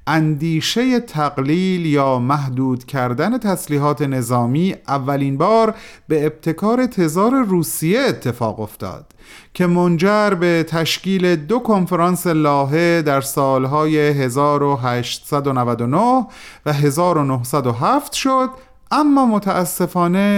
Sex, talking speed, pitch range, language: male, 90 wpm, 130-190 Hz, Persian